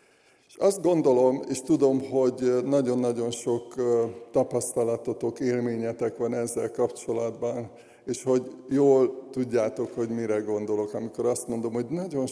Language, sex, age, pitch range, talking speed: Hungarian, male, 60-79, 115-135 Hz, 115 wpm